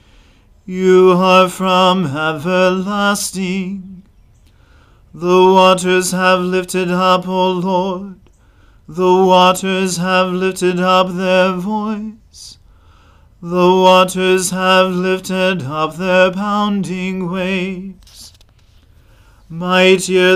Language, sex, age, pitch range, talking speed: English, male, 40-59, 180-190 Hz, 80 wpm